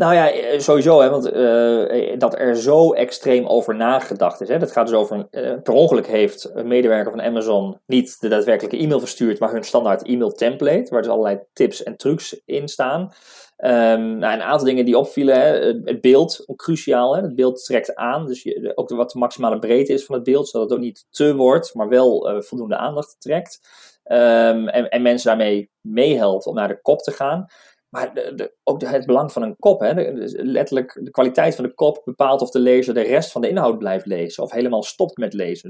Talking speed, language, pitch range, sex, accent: 220 wpm, Dutch, 115-140 Hz, male, Dutch